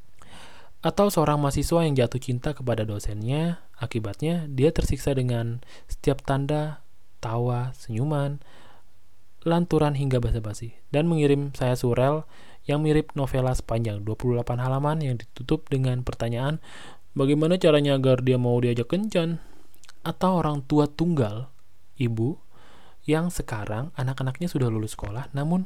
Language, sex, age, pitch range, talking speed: Indonesian, male, 20-39, 115-150 Hz, 120 wpm